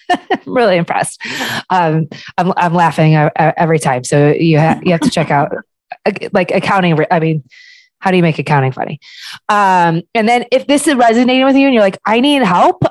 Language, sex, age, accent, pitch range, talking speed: English, female, 20-39, American, 155-190 Hz, 195 wpm